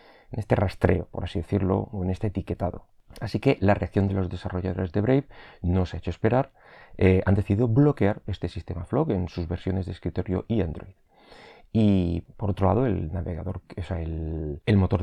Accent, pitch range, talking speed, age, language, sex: Spanish, 90-115 Hz, 195 wpm, 30-49, Spanish, male